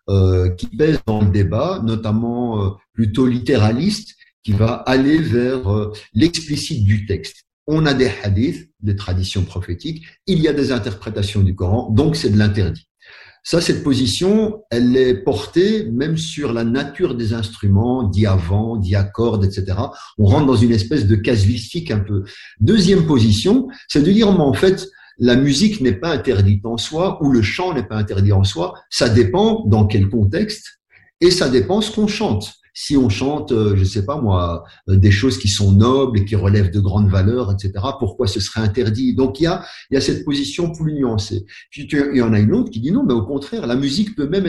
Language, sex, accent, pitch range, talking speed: French, male, French, 100-145 Hz, 200 wpm